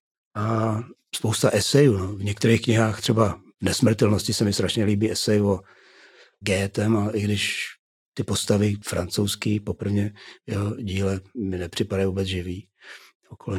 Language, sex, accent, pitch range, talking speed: Czech, male, native, 100-115 Hz, 130 wpm